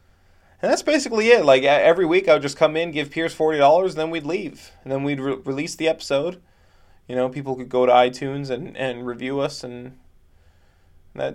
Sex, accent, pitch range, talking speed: male, American, 125-165 Hz, 200 wpm